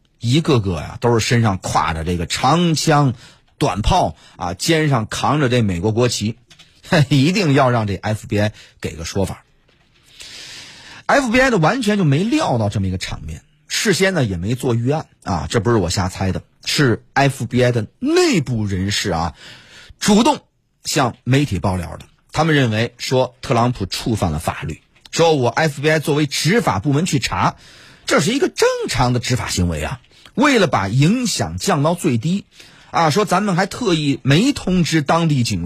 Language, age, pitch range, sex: Chinese, 30-49, 110-170 Hz, male